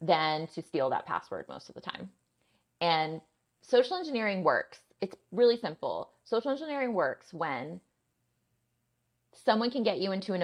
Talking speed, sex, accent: 150 wpm, female, American